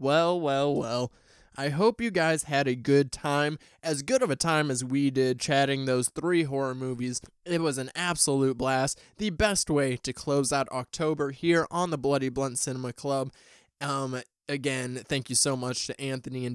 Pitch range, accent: 130-155 Hz, American